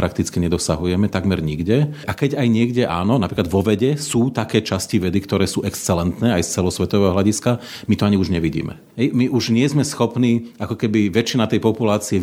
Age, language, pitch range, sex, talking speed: 40-59, Slovak, 100-130 Hz, male, 190 wpm